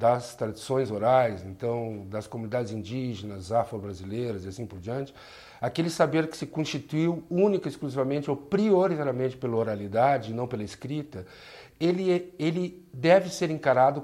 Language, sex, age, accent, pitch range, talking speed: Portuguese, male, 50-69, Brazilian, 125-160 Hz, 135 wpm